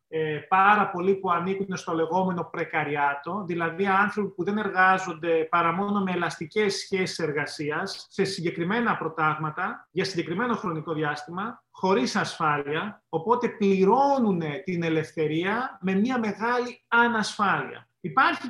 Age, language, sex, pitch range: 30-49, Greek, male, 170-220 Hz